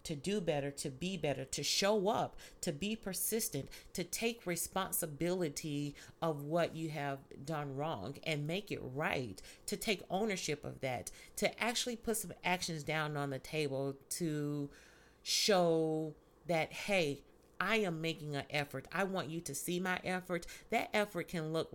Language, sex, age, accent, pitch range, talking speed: English, female, 40-59, American, 150-190 Hz, 165 wpm